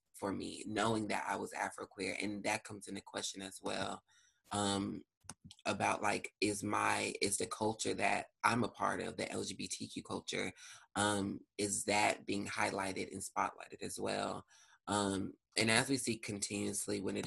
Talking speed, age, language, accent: 165 wpm, 20-39, English, American